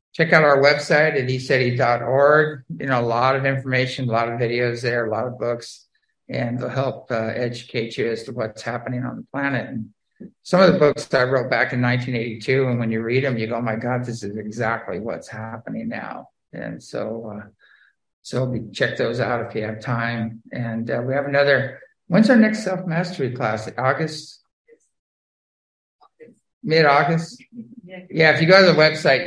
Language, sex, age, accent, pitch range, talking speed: English, male, 50-69, American, 120-155 Hz, 195 wpm